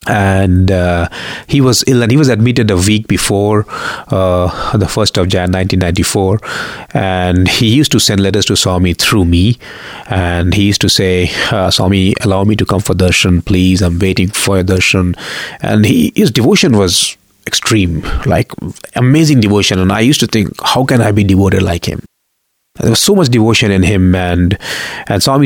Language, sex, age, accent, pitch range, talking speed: English, male, 30-49, Indian, 90-110 Hz, 185 wpm